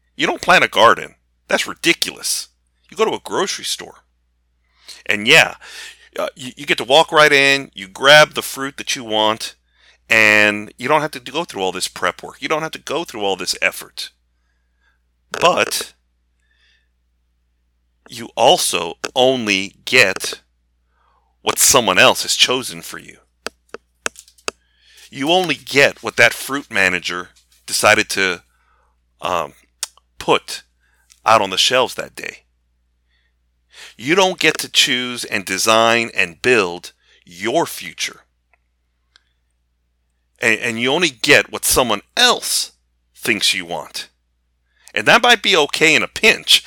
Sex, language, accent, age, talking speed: male, English, American, 40-59, 140 wpm